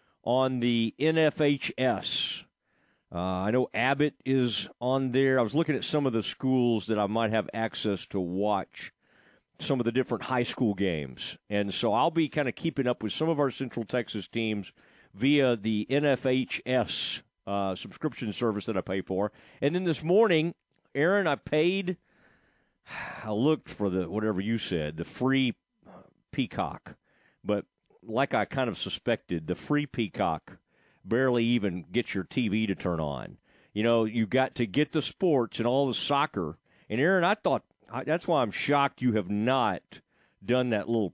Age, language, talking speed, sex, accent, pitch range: 40-59, English, 170 wpm, male, American, 105-135 Hz